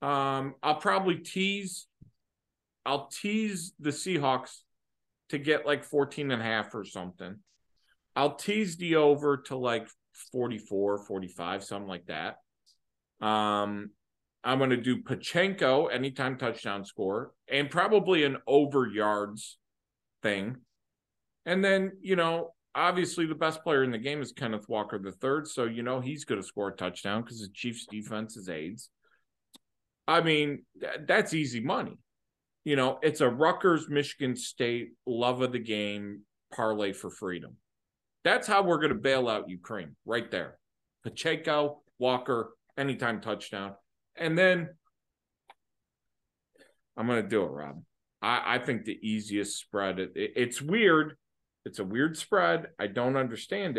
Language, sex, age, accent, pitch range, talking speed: English, male, 40-59, American, 110-155 Hz, 145 wpm